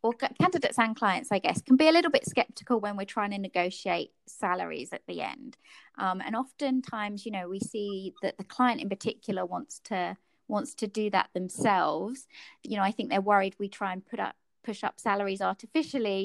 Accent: British